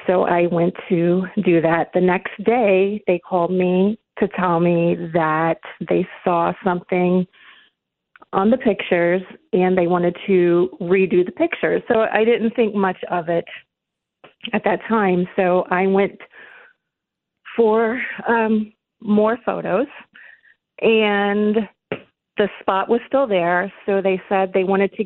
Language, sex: English, female